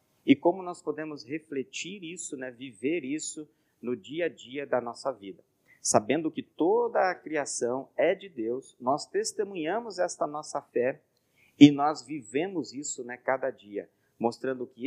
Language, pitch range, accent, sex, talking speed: Portuguese, 135-205 Hz, Brazilian, male, 155 wpm